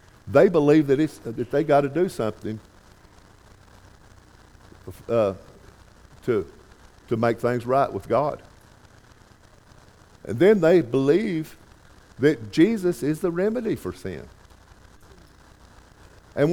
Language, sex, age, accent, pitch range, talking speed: English, male, 50-69, American, 100-140 Hz, 105 wpm